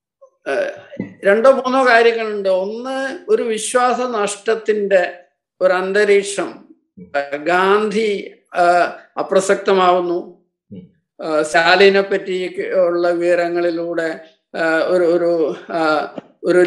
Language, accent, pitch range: Malayalam, native, 175-230 Hz